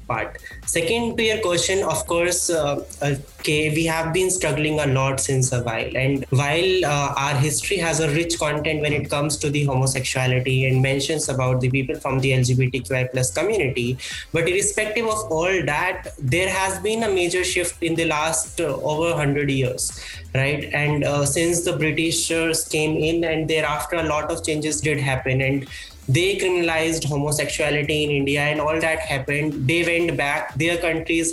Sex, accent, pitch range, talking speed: male, Indian, 140-170 Hz, 170 wpm